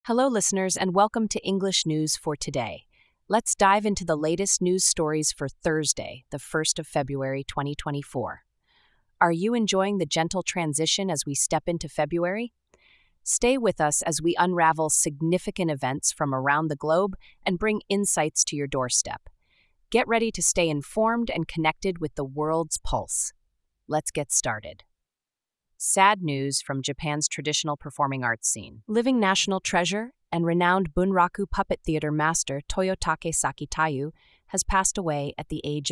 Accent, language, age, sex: American, English, 30-49, female